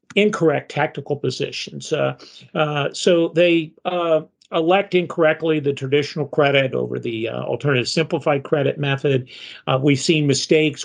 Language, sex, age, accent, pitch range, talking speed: English, male, 50-69, American, 135-165 Hz, 135 wpm